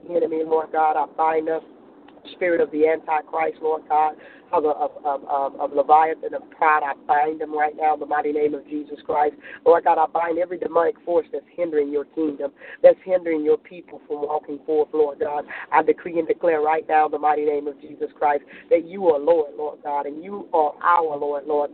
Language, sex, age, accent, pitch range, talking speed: English, female, 40-59, American, 155-185 Hz, 215 wpm